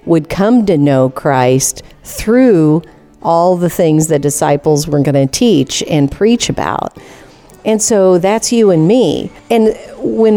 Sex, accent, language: female, American, English